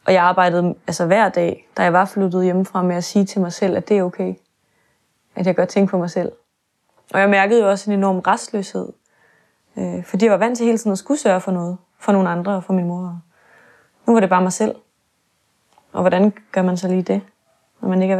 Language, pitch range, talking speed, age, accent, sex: Danish, 180-200 Hz, 240 wpm, 20-39, native, female